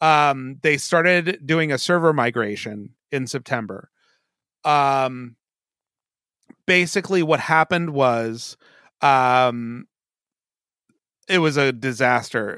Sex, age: male, 30-49